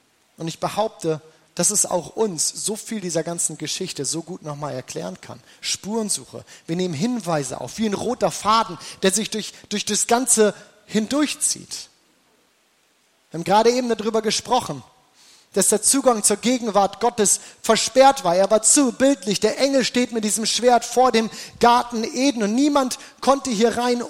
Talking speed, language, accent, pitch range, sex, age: 165 wpm, German, German, 195-245 Hz, male, 30-49